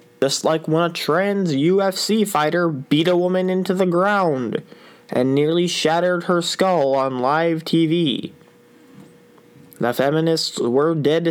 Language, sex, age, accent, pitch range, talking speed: English, male, 20-39, American, 125-175 Hz, 135 wpm